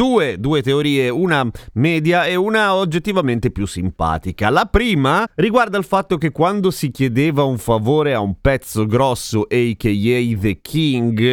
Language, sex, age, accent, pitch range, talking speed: Italian, male, 30-49, native, 115-155 Hz, 150 wpm